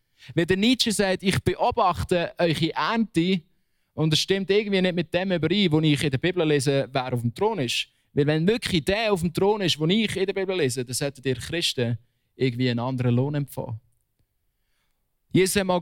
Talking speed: 195 wpm